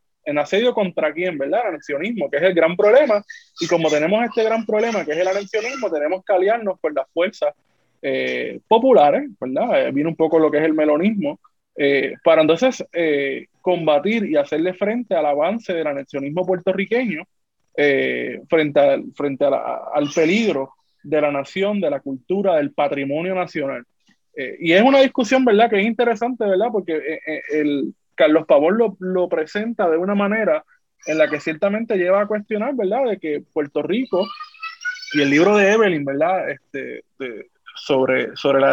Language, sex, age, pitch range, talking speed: Spanish, male, 20-39, 150-215 Hz, 180 wpm